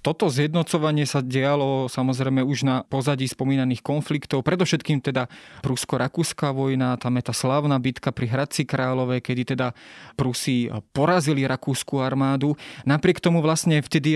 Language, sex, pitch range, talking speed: Slovak, male, 135-155 Hz, 135 wpm